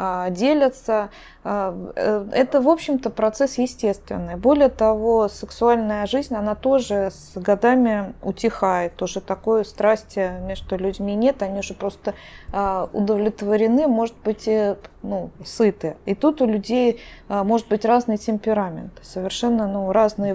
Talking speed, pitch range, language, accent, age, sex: 125 wpm, 190-230 Hz, Russian, native, 20-39, female